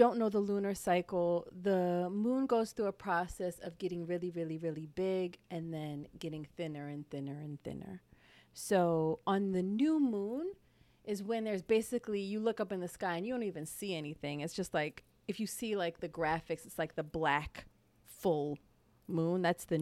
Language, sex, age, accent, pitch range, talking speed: English, female, 40-59, American, 155-195 Hz, 190 wpm